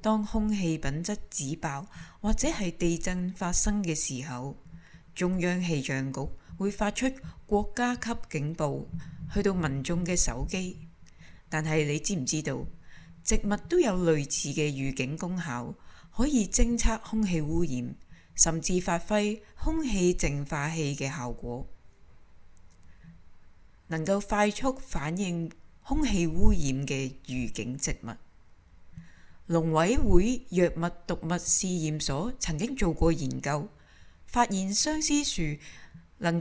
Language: Chinese